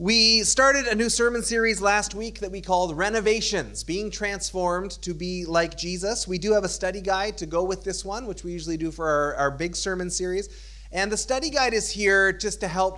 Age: 30-49